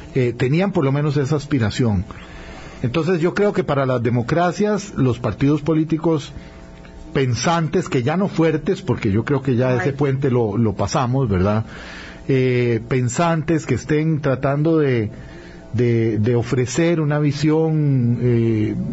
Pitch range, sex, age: 120-170 Hz, male, 50-69